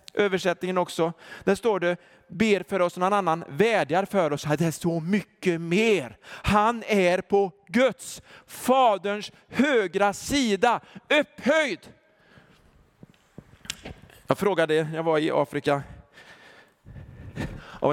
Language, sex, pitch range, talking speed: Swedish, male, 160-240 Hz, 115 wpm